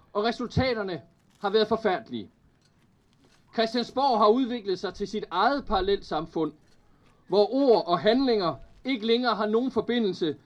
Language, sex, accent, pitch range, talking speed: Danish, male, native, 185-235 Hz, 130 wpm